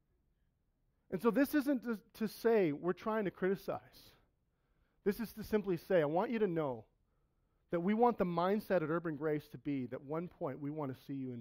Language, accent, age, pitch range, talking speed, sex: English, American, 40-59, 130-175 Hz, 210 wpm, male